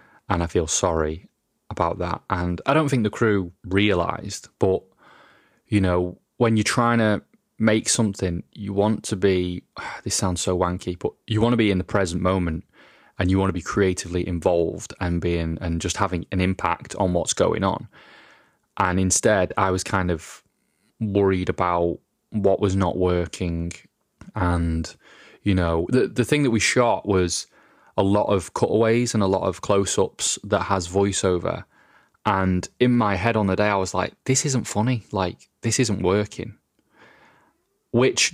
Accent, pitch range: British, 90-105 Hz